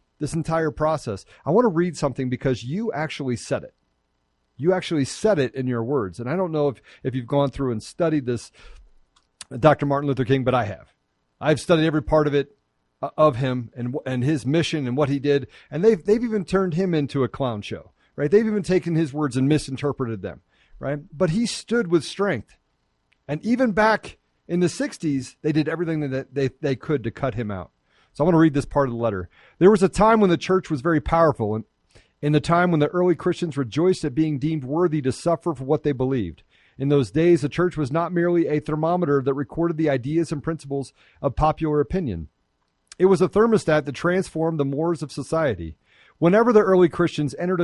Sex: male